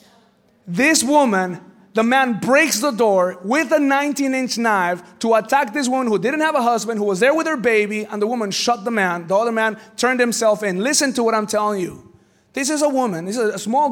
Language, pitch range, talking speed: English, 185-240 Hz, 225 wpm